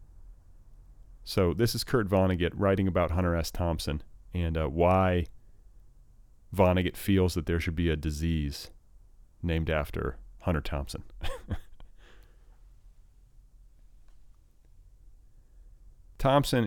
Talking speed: 95 wpm